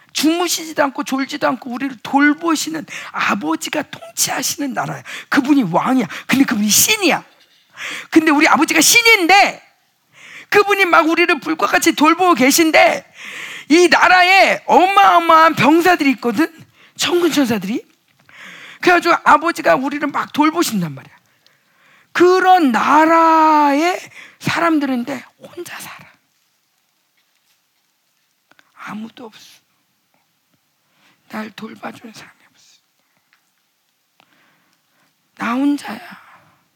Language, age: Korean, 40-59